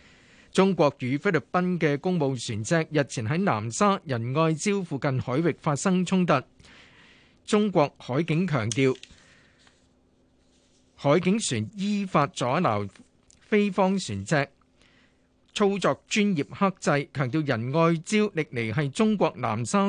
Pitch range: 120-165 Hz